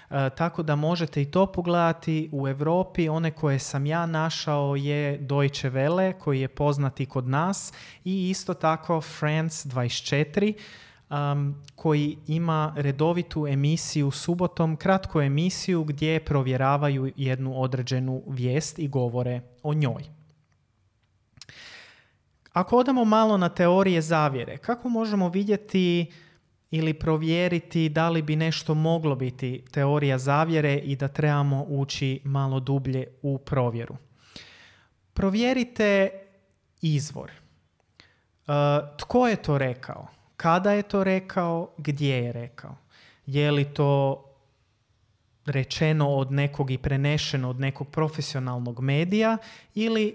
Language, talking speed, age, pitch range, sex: Croatian, 115 wpm, 30-49, 135-165 Hz, male